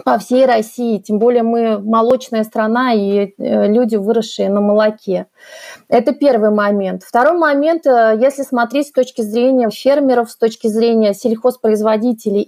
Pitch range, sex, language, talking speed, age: 220-255 Hz, female, Russian, 135 wpm, 30-49